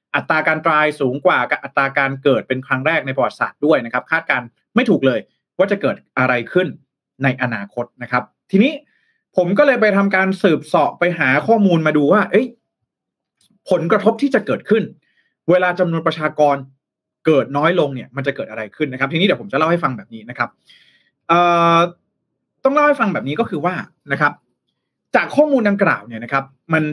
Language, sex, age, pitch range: Thai, male, 30-49, 135-195 Hz